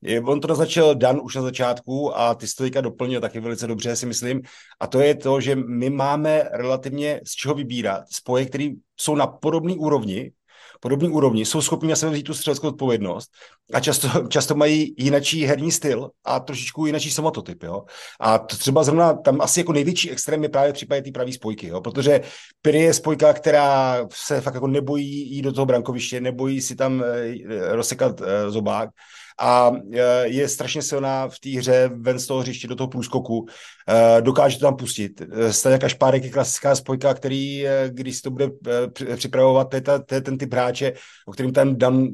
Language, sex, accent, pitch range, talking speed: Czech, male, native, 125-140 Hz, 185 wpm